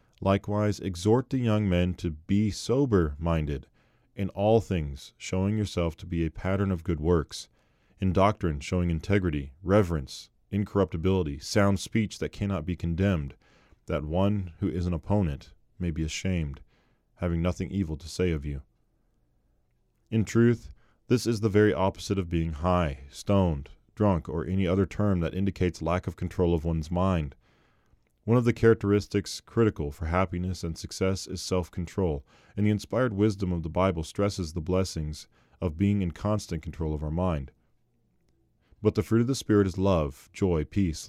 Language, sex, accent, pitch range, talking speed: English, male, American, 80-100 Hz, 160 wpm